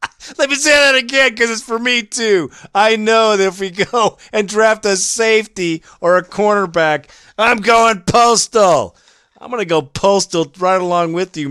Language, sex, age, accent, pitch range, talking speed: English, male, 50-69, American, 115-165 Hz, 180 wpm